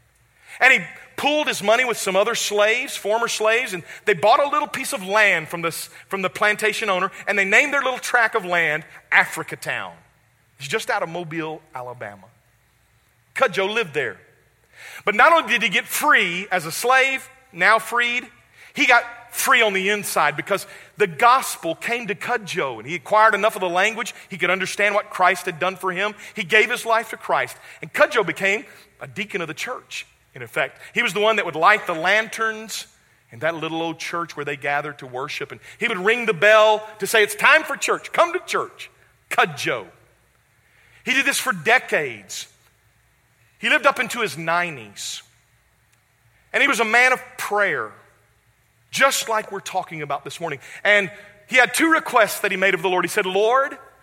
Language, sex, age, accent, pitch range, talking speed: English, male, 40-59, American, 170-235 Hz, 190 wpm